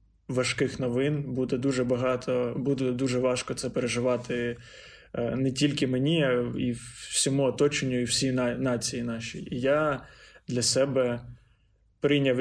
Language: Ukrainian